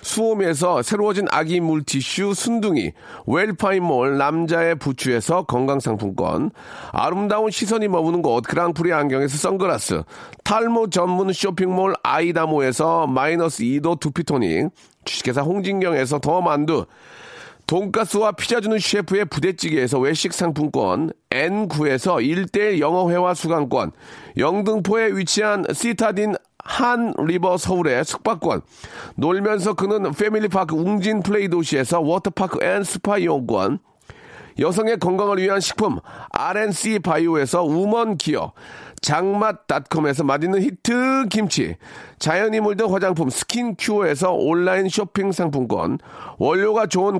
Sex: male